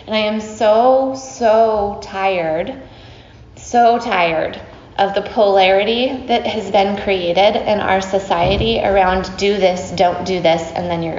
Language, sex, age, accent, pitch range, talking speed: English, female, 20-39, American, 180-215 Hz, 140 wpm